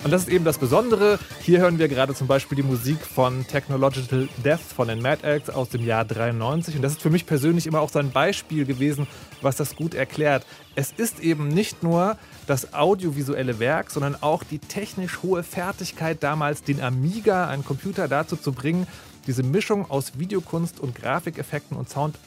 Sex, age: male, 30-49